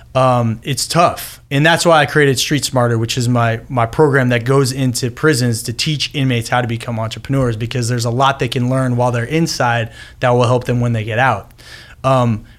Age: 20-39